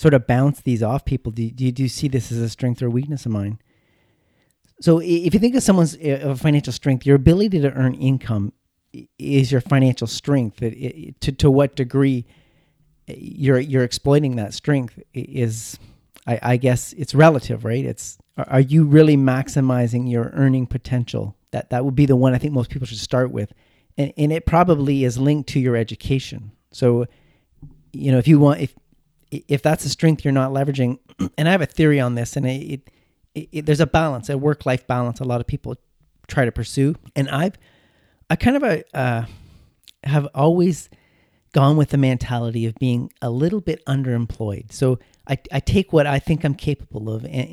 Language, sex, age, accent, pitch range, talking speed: English, male, 40-59, American, 120-145 Hz, 185 wpm